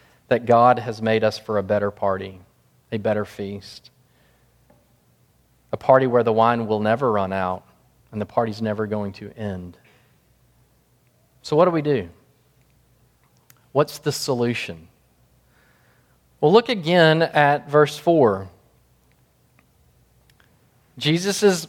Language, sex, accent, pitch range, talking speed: English, male, American, 110-155 Hz, 120 wpm